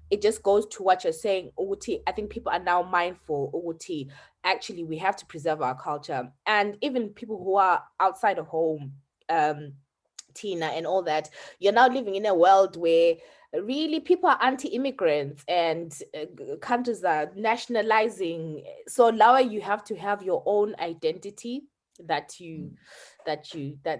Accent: South African